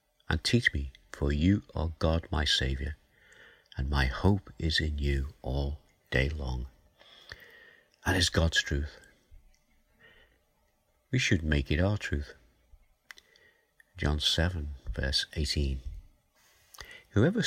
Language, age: English, 50-69